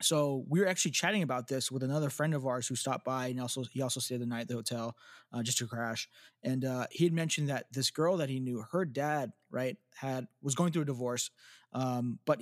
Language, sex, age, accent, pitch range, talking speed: English, male, 20-39, American, 125-150 Hz, 245 wpm